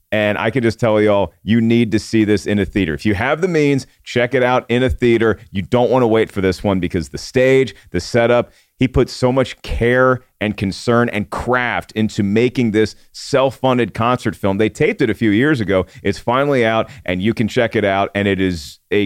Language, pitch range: English, 105-130 Hz